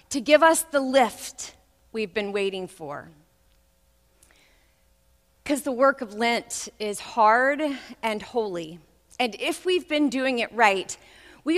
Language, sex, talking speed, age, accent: English, female, 135 wpm, 40-59, American